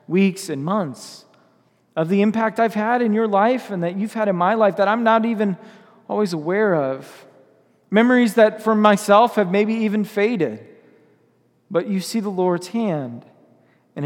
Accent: American